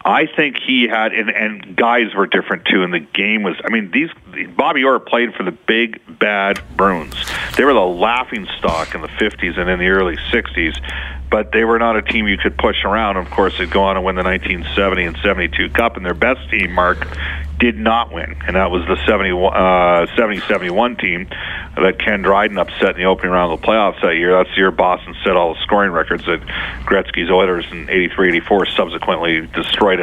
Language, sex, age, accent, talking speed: English, male, 40-59, American, 210 wpm